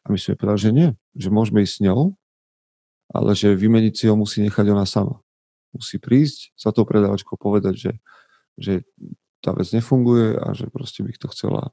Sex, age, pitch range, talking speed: male, 40-59, 100-115 Hz, 190 wpm